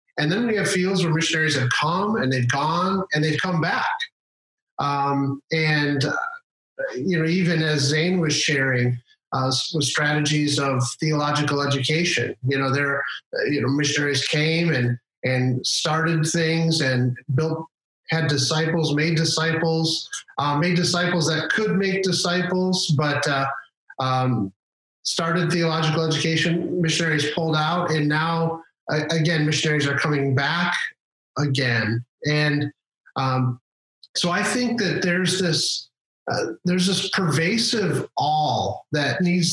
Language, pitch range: English, 140-175 Hz